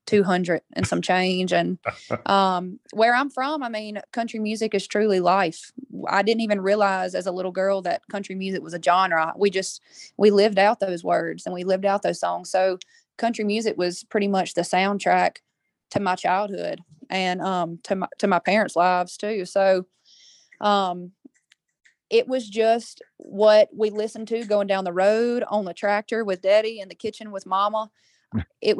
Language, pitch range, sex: English, 185-210 Hz, female